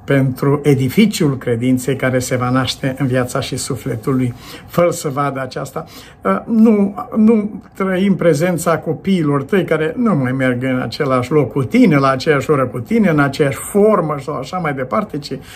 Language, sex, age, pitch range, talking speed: Romanian, male, 60-79, 130-160 Hz, 165 wpm